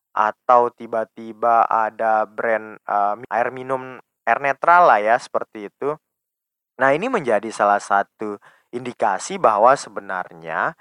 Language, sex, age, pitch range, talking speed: Indonesian, male, 20-39, 110-145 Hz, 115 wpm